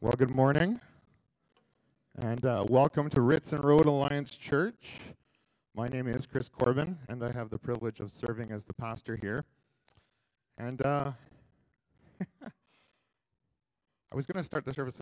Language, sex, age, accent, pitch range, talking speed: English, male, 40-59, American, 100-140 Hz, 150 wpm